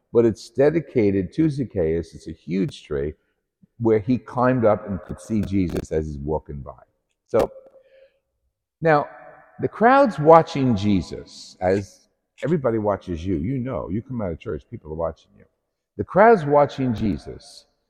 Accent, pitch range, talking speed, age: American, 90-140 Hz, 155 wpm, 50-69